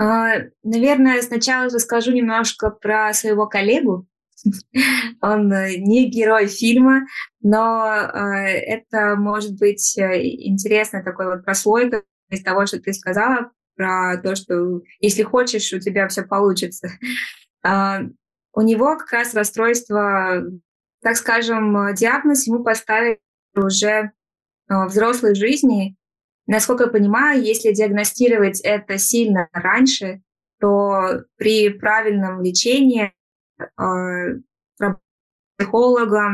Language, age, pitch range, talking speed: Russian, 20-39, 190-230 Hz, 100 wpm